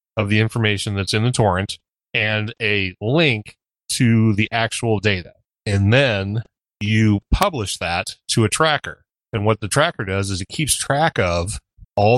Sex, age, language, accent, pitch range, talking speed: male, 30-49, English, American, 95-115 Hz, 165 wpm